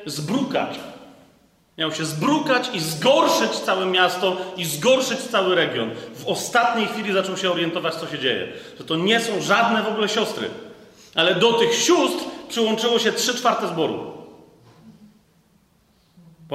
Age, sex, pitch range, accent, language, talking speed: 40-59, male, 180-235 Hz, native, Polish, 140 wpm